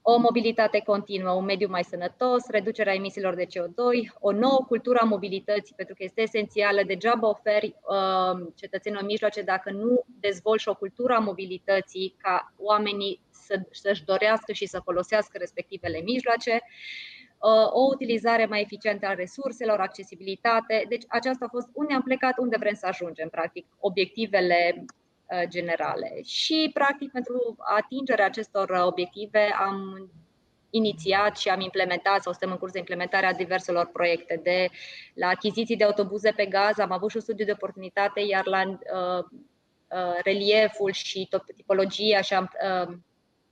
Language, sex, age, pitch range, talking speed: Romanian, female, 20-39, 180-215 Hz, 145 wpm